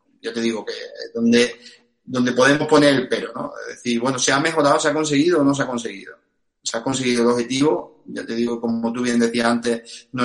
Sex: male